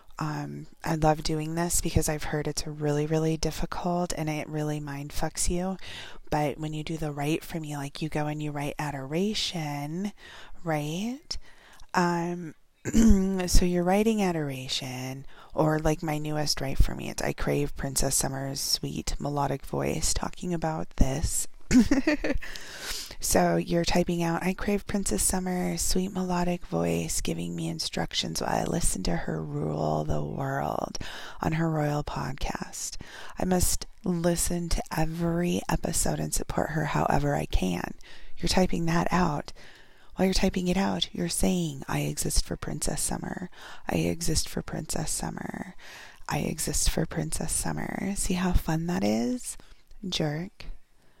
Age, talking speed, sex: 30-49, 150 wpm, female